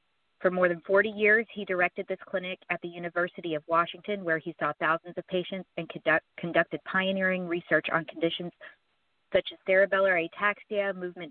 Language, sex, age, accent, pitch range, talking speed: English, female, 30-49, American, 160-190 Hz, 165 wpm